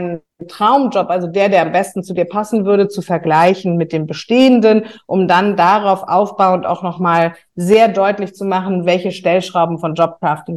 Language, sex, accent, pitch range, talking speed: German, female, German, 175-205 Hz, 165 wpm